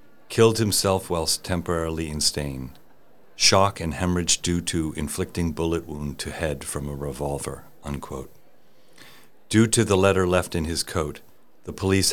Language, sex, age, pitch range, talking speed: English, male, 50-69, 80-95 Hz, 145 wpm